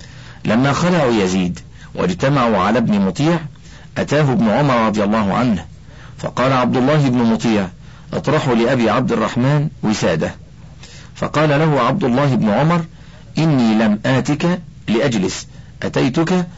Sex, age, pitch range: male, 50-69, 110-150 Hz